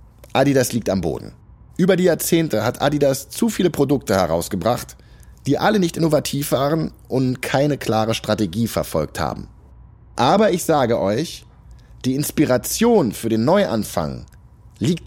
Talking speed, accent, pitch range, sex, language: 135 wpm, German, 105-160 Hz, male, German